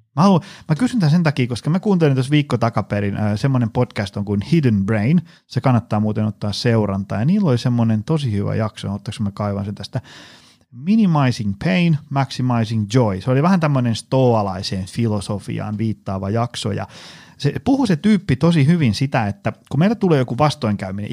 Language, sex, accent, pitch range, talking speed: Finnish, male, native, 115-155 Hz, 175 wpm